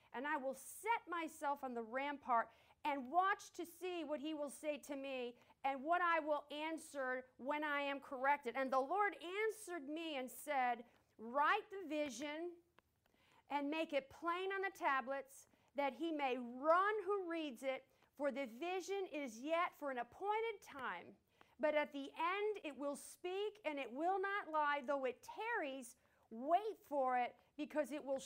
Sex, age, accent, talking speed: female, 50-69, American, 170 wpm